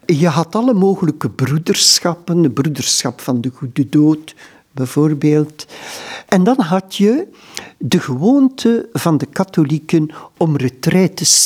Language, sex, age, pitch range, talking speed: Dutch, male, 60-79, 135-185 Hz, 120 wpm